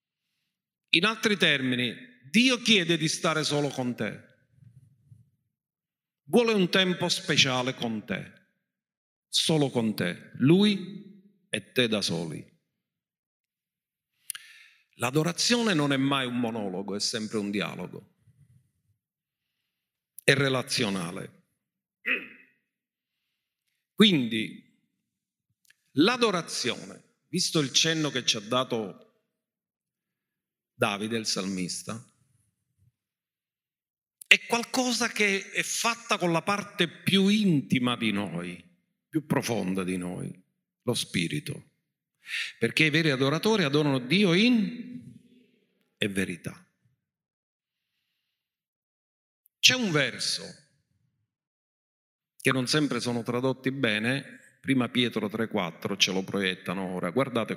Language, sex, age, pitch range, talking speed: Italian, male, 50-69, 115-185 Hz, 95 wpm